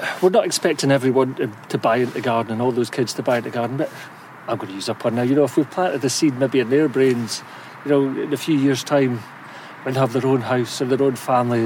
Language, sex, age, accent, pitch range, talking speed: English, male, 40-59, British, 130-150 Hz, 280 wpm